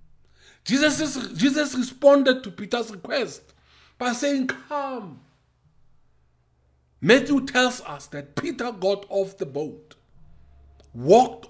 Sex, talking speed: male, 100 wpm